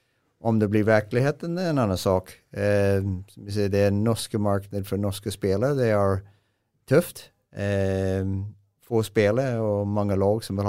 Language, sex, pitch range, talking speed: English, male, 95-110 Hz, 165 wpm